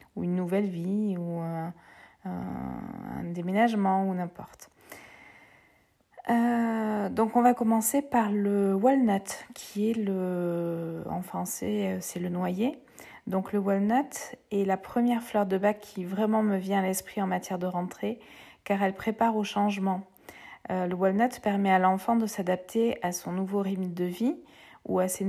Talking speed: 155 wpm